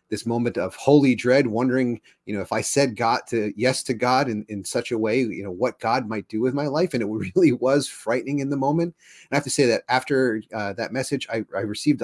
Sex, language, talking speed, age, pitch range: male, English, 255 wpm, 30-49, 105-130 Hz